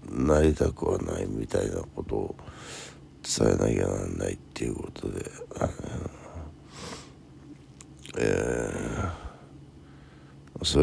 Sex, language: male, Japanese